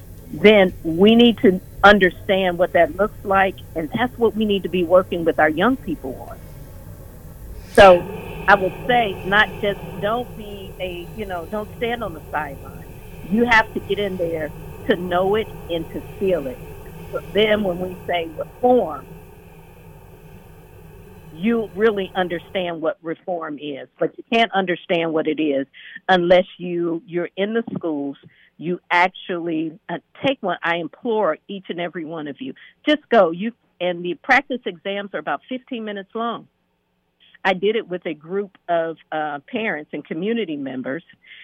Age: 50-69